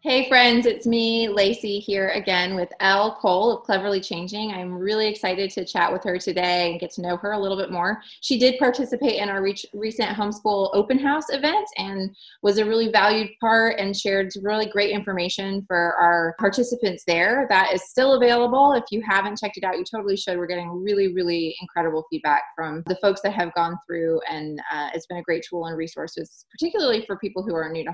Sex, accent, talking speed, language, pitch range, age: female, American, 210 wpm, English, 180-225 Hz, 20-39